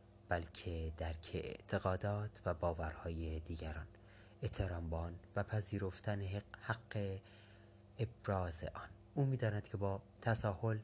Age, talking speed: 30-49, 95 wpm